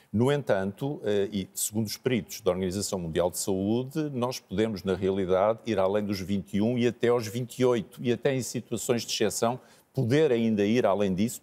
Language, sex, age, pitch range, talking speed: Portuguese, male, 50-69, 110-140 Hz, 180 wpm